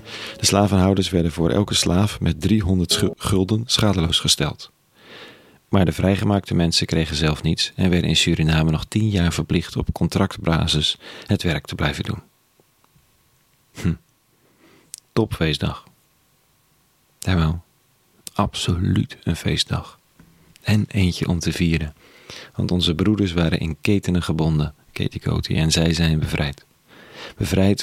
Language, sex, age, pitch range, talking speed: Dutch, male, 40-59, 85-105 Hz, 125 wpm